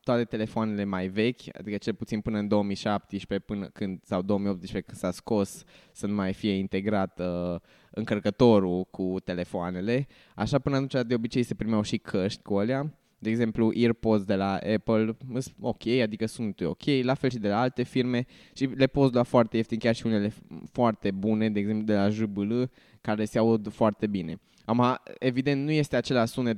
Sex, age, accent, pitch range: male, 20-39, native, 100-120 Hz